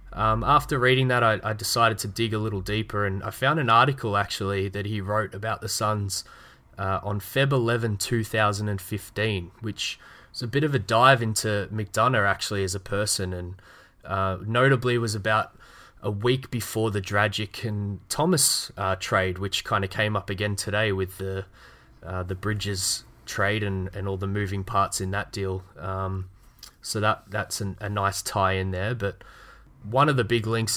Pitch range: 100-115 Hz